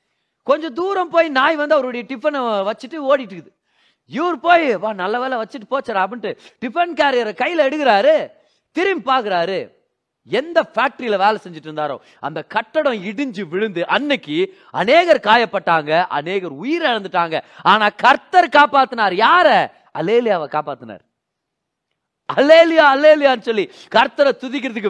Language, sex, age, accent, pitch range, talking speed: Tamil, male, 30-49, native, 195-280 Hz, 115 wpm